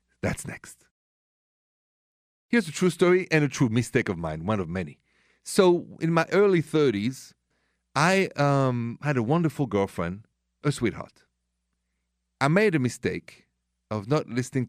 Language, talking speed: English, 145 wpm